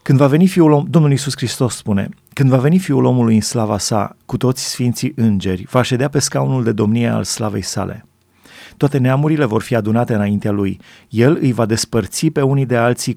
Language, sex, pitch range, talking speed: Romanian, male, 110-135 Hz, 200 wpm